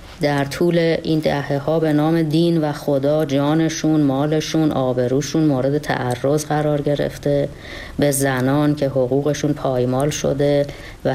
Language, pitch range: Persian, 135-155 Hz